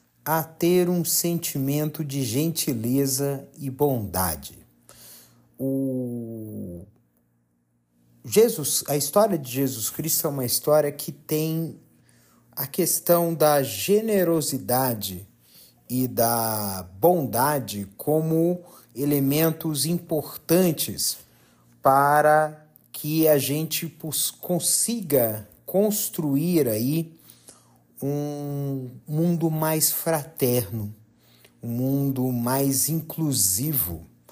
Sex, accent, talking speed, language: male, Brazilian, 75 wpm, Portuguese